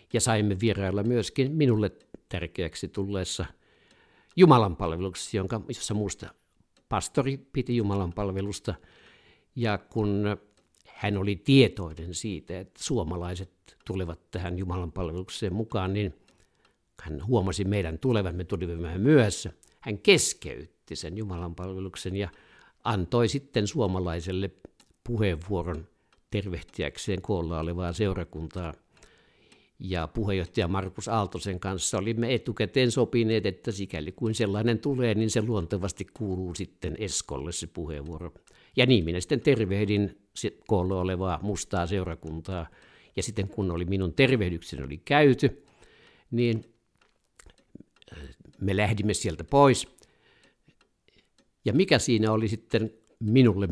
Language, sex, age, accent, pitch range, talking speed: Finnish, male, 60-79, native, 90-110 Hz, 105 wpm